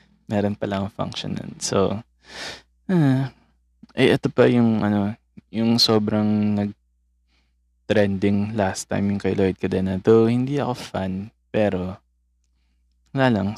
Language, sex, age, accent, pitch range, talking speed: Filipino, male, 20-39, native, 90-110 Hz, 115 wpm